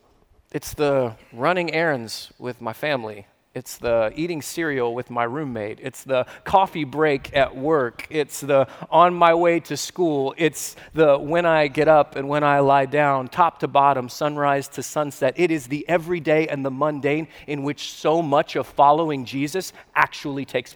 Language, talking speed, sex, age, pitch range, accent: English, 175 wpm, male, 30-49, 140-200 Hz, American